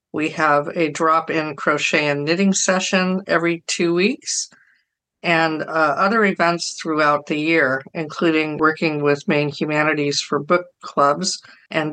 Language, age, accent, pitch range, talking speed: English, 50-69, American, 150-175 Hz, 135 wpm